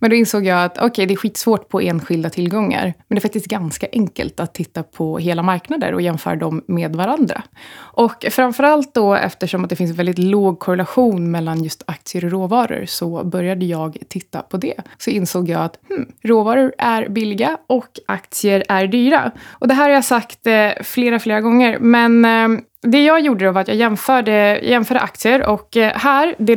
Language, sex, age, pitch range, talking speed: Swedish, female, 20-39, 185-245 Hz, 195 wpm